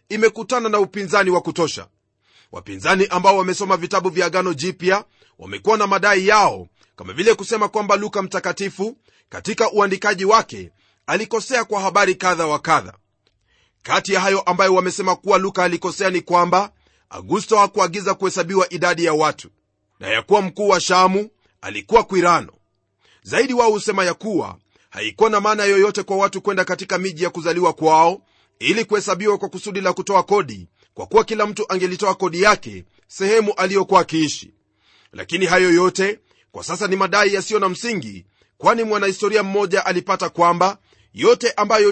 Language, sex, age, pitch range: Swahili, male, 30-49, 180-210 Hz